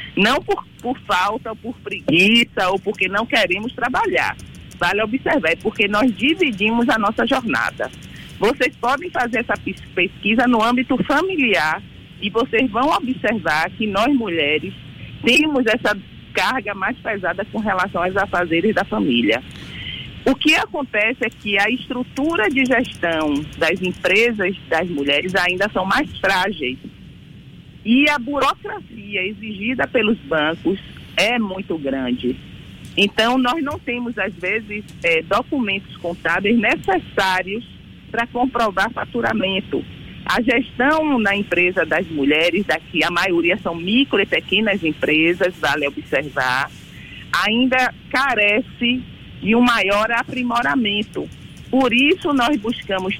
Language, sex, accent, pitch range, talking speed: Portuguese, female, Brazilian, 185-255 Hz, 125 wpm